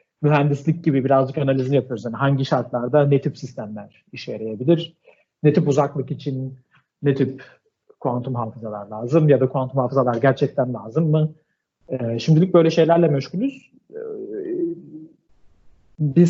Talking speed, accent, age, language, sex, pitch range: 130 wpm, native, 40-59, Turkish, male, 130-155 Hz